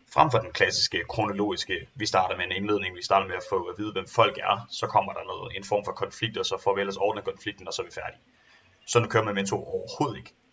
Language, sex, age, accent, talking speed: Danish, male, 30-49, native, 260 wpm